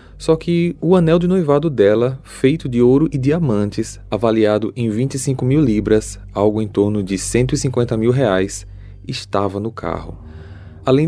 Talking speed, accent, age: 150 wpm, Brazilian, 20-39